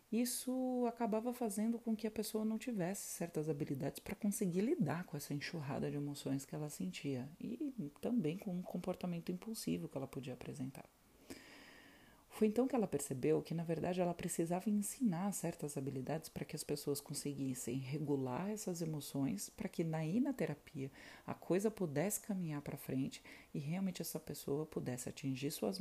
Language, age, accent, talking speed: Portuguese, 40-59, Brazilian, 165 wpm